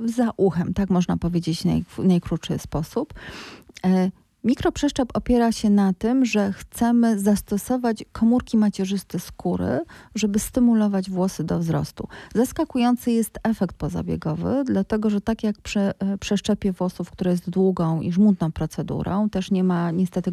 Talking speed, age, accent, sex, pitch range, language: 135 wpm, 30-49, native, female, 175-220 Hz, Polish